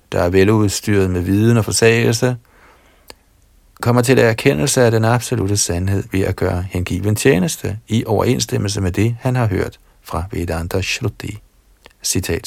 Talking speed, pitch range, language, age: 150 wpm, 90-115 Hz, Danish, 60-79